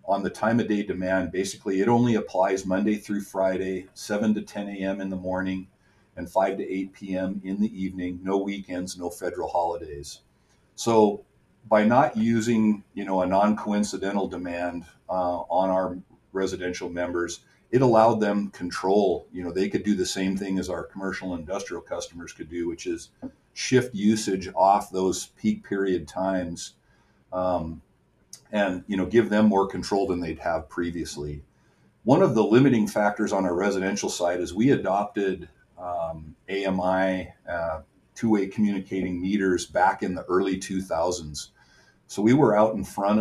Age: 50-69